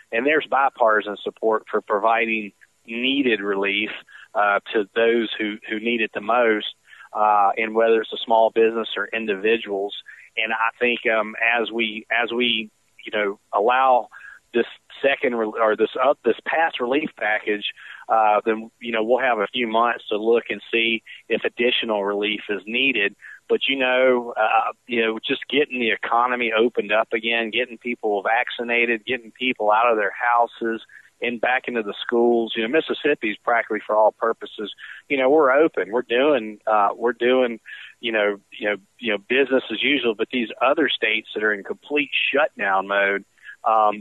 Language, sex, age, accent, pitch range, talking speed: English, male, 40-59, American, 110-120 Hz, 175 wpm